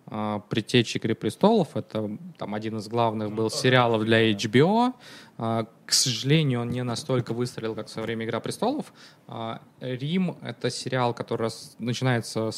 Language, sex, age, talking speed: Russian, male, 20-39, 135 wpm